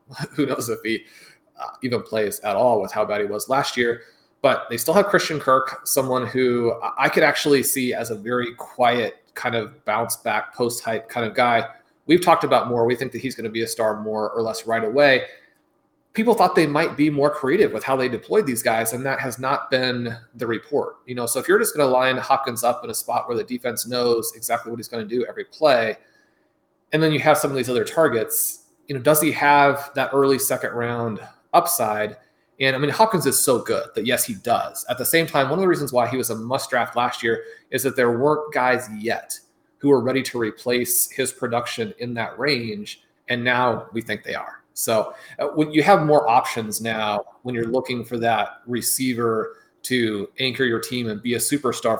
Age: 30-49